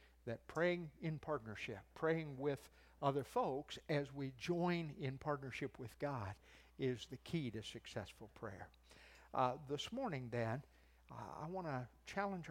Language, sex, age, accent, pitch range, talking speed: English, male, 60-79, American, 110-175 Hz, 140 wpm